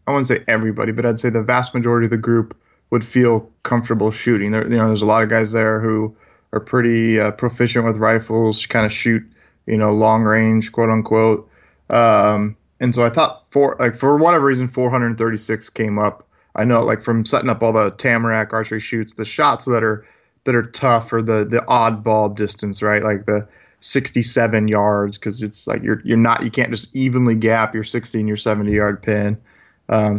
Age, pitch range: 20-39, 110-120 Hz